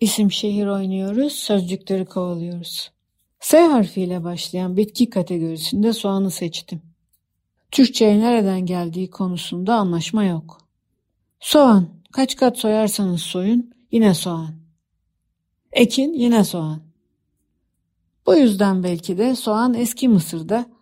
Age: 60-79